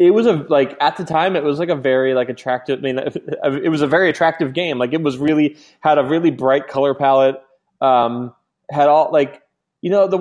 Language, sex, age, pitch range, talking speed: English, male, 20-39, 125-160 Hz, 230 wpm